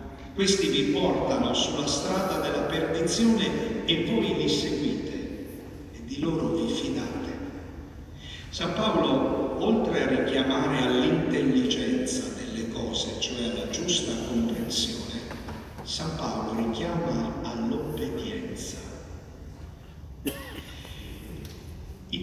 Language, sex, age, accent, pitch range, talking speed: Italian, male, 50-69, native, 115-160 Hz, 90 wpm